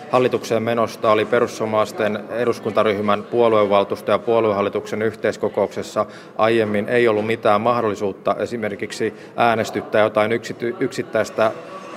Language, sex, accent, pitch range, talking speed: Finnish, male, native, 105-120 Hz, 90 wpm